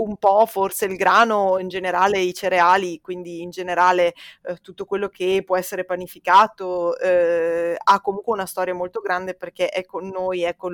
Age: 20-39